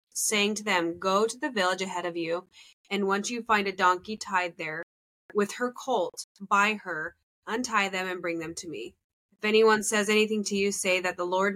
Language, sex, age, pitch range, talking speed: English, female, 20-39, 180-215 Hz, 210 wpm